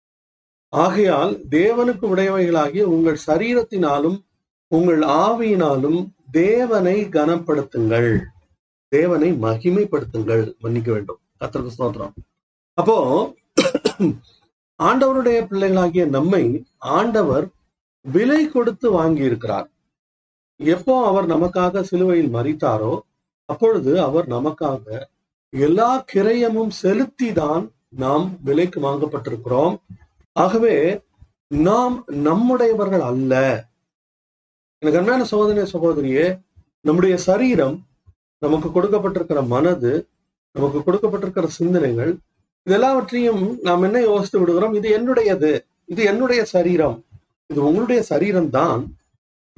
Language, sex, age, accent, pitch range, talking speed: Tamil, male, 40-59, native, 140-205 Hz, 80 wpm